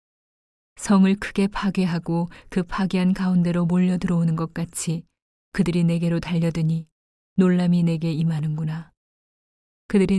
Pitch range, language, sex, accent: 165-185 Hz, Korean, female, native